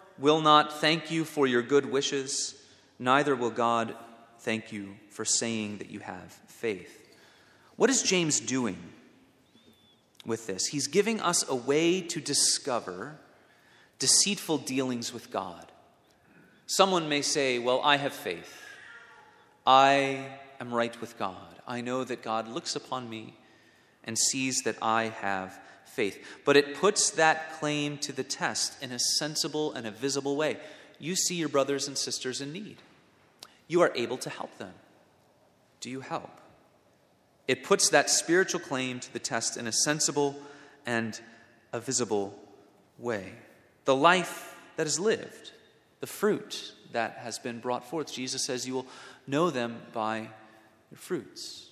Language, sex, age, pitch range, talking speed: English, male, 30-49, 115-150 Hz, 150 wpm